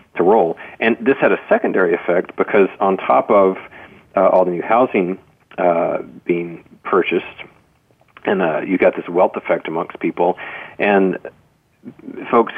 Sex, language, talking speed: male, English, 150 wpm